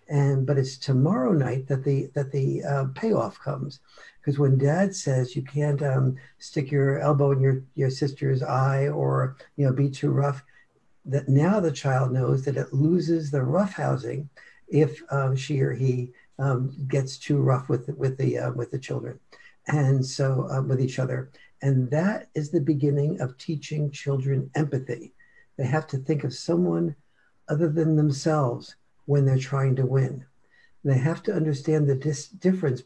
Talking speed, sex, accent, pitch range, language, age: 175 wpm, male, American, 135-155 Hz, English, 60-79